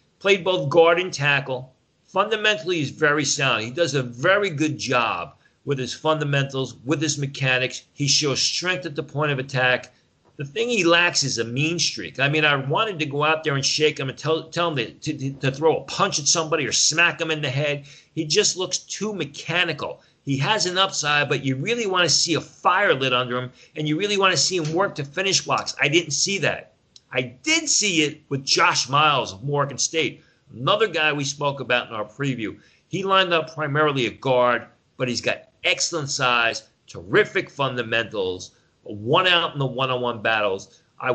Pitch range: 130-165 Hz